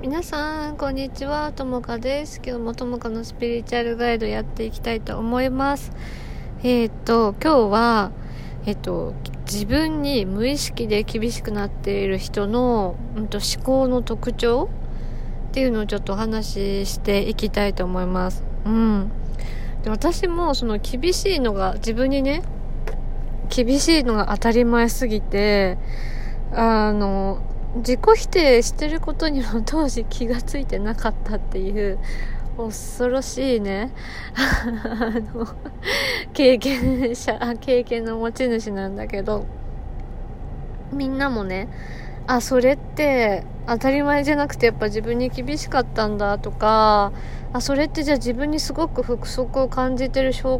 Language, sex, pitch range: Japanese, female, 210-265 Hz